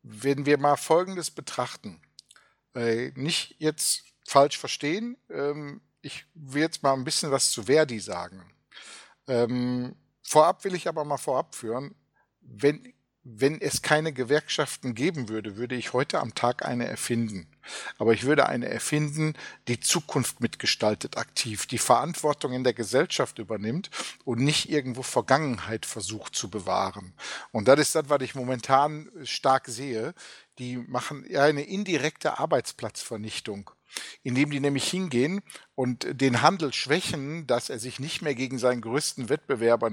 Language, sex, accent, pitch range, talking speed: German, male, German, 120-145 Hz, 140 wpm